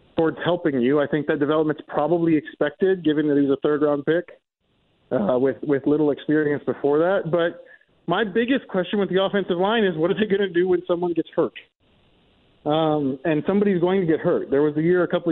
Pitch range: 140-175 Hz